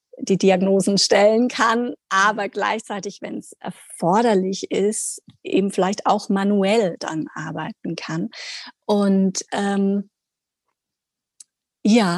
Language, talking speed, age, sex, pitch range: German, 100 wpm, 30-49, female, 195-245 Hz